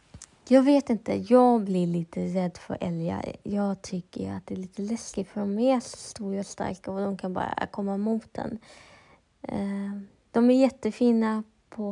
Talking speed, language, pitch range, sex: 170 wpm, Swedish, 195-240 Hz, female